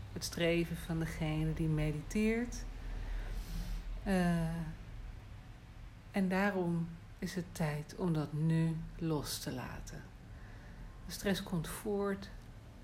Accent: Dutch